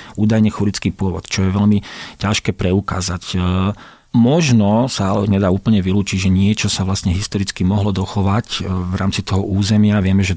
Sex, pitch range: male, 95-110 Hz